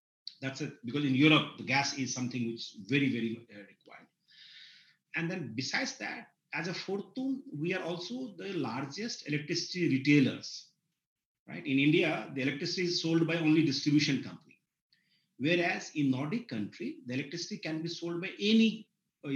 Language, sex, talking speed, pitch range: English, male, 160 wpm, 130-175 Hz